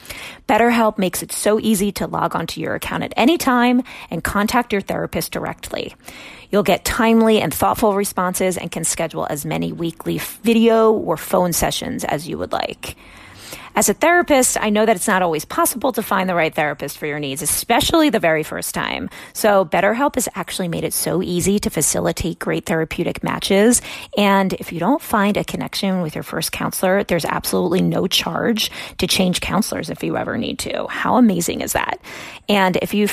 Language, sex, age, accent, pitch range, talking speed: English, female, 30-49, American, 180-225 Hz, 190 wpm